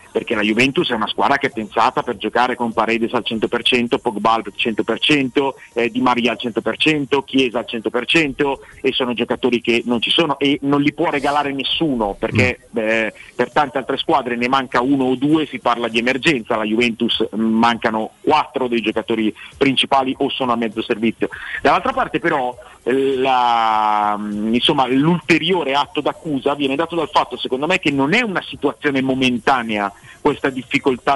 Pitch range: 120-145 Hz